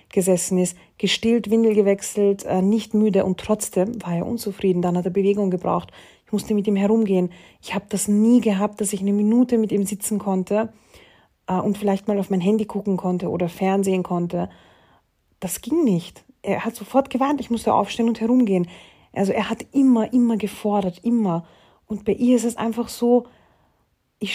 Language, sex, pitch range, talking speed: German, female, 185-230 Hz, 180 wpm